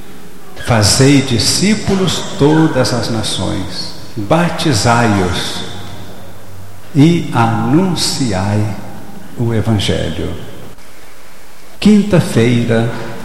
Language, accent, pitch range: Portuguese, Brazilian, 100-140 Hz